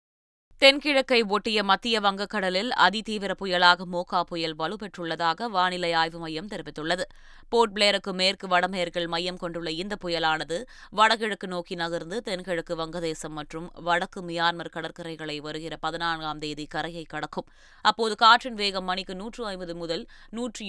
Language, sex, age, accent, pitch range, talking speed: Tamil, female, 20-39, native, 165-205 Hz, 120 wpm